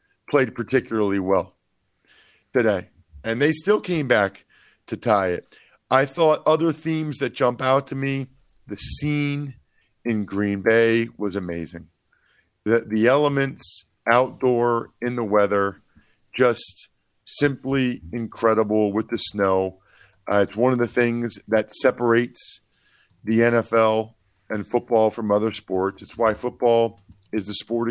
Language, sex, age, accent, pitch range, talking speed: English, male, 50-69, American, 105-130 Hz, 135 wpm